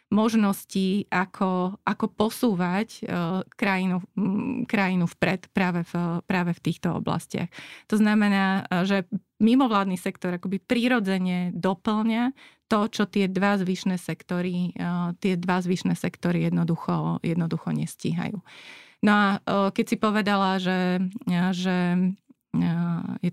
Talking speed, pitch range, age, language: 110 wpm, 170-195 Hz, 30-49, Slovak